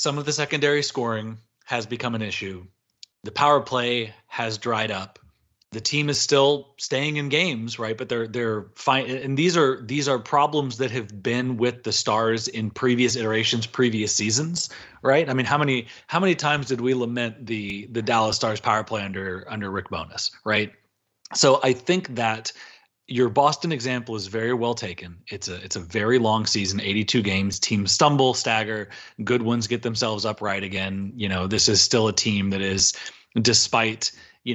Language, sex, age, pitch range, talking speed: English, male, 30-49, 105-130 Hz, 185 wpm